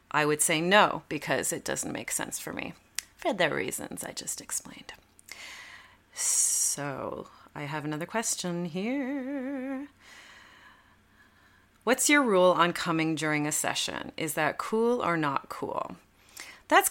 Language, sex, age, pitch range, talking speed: English, female, 30-49, 145-215 Hz, 135 wpm